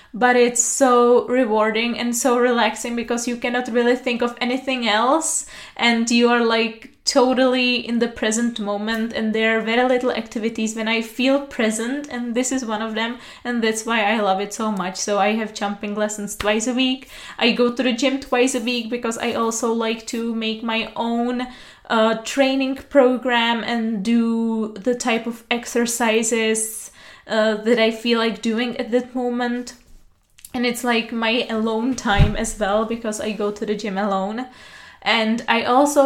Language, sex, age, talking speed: Czech, female, 20-39, 180 wpm